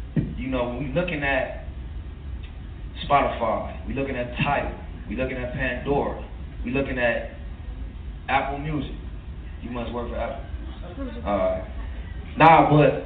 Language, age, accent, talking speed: English, 20-39, American, 125 wpm